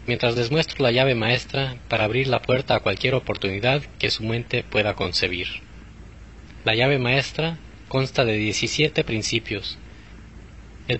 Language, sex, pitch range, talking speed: English, male, 105-135 Hz, 140 wpm